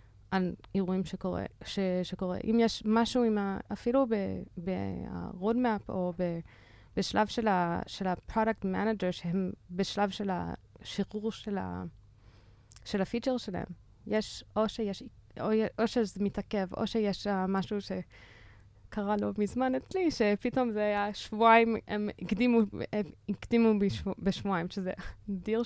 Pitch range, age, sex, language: 185-230 Hz, 20-39, female, Hebrew